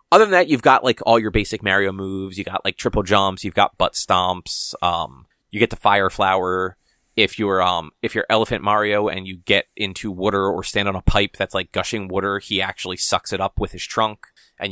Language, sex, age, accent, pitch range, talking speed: English, male, 30-49, American, 95-110 Hz, 230 wpm